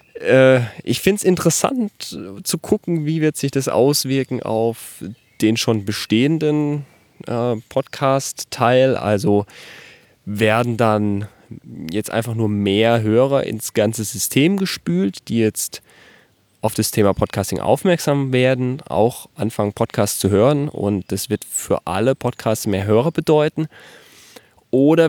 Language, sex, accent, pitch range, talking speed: German, male, German, 105-135 Hz, 120 wpm